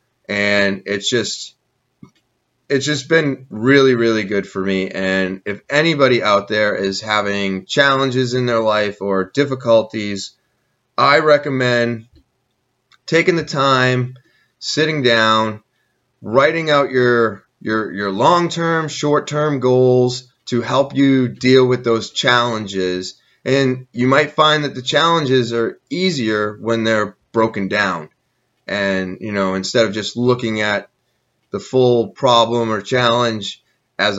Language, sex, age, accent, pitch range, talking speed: English, male, 20-39, American, 105-130 Hz, 130 wpm